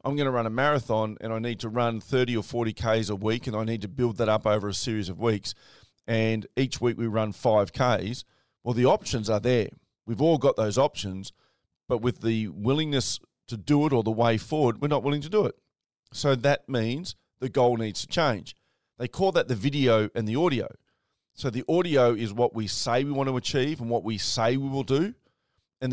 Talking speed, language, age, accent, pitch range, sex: 220 wpm, English, 40-59, Australian, 110-125 Hz, male